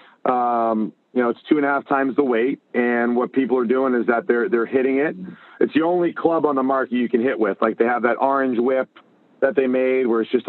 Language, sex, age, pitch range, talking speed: English, male, 40-59, 110-130 Hz, 255 wpm